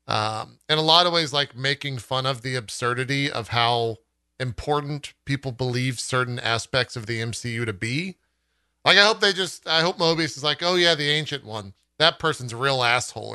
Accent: American